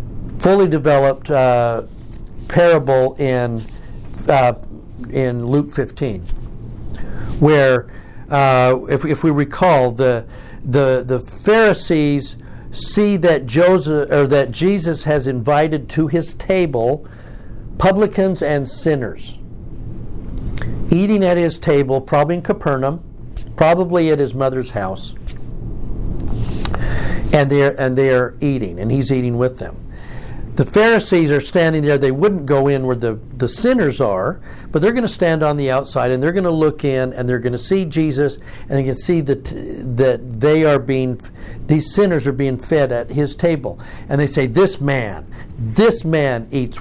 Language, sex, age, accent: English, male, 60-79, American